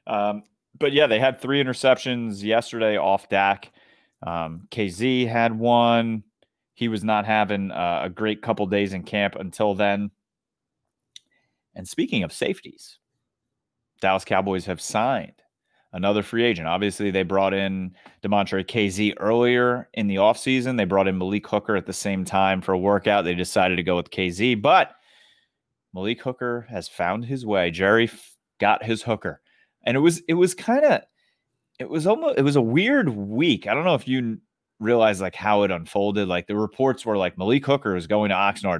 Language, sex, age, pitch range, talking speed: English, male, 30-49, 95-120 Hz, 175 wpm